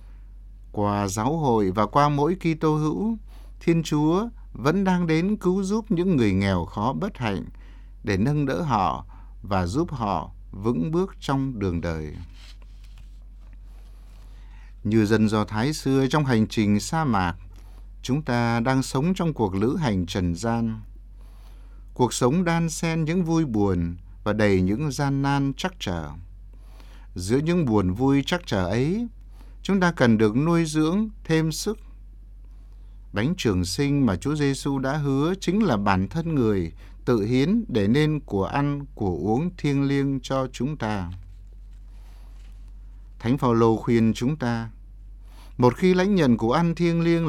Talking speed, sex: 155 wpm, male